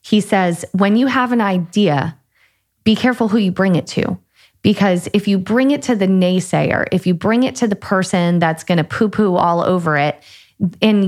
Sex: female